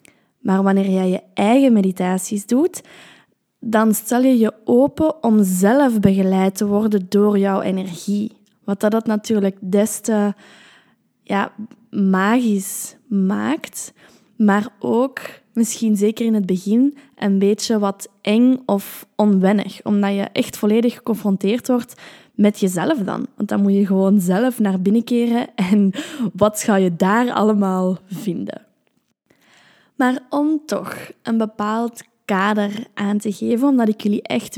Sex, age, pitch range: female, 20-39, 200-235 Hz